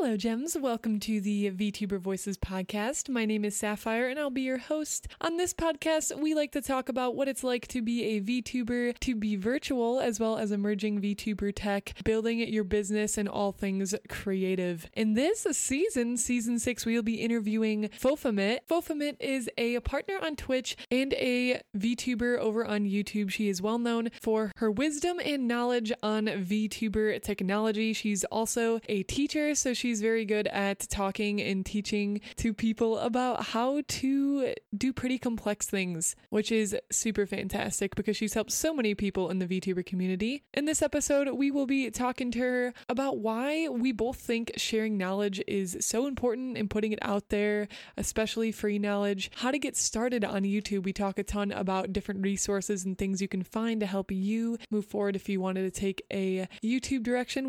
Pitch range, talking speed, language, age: 205-255 Hz, 185 wpm, English, 20-39